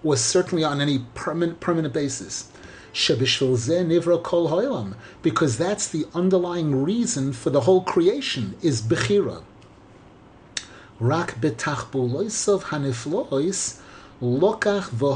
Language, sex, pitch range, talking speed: English, male, 130-195 Hz, 65 wpm